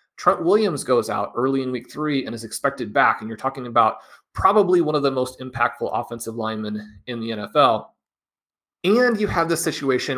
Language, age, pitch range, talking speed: English, 30-49, 115-150 Hz, 190 wpm